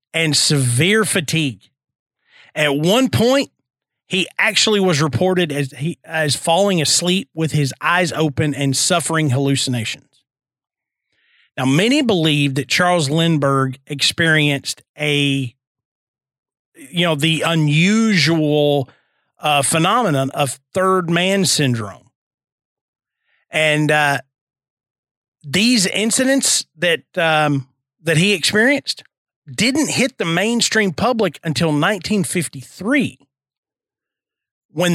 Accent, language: American, English